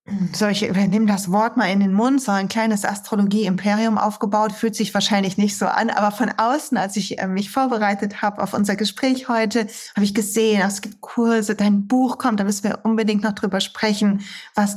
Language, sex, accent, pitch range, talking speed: German, female, German, 195-230 Hz, 205 wpm